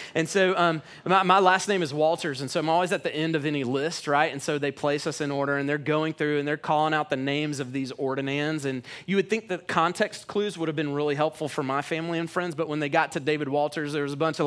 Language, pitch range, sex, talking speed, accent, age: English, 135-175 Hz, male, 285 wpm, American, 30-49